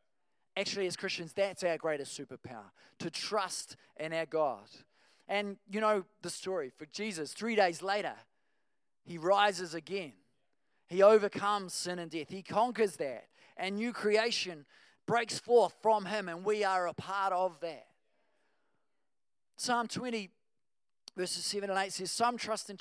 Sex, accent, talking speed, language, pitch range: male, Australian, 150 wpm, English, 160-210 Hz